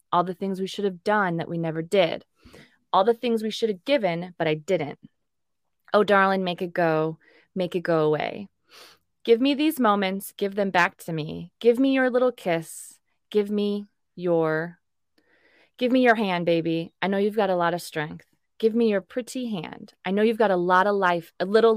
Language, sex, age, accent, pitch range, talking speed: English, female, 20-39, American, 170-220 Hz, 205 wpm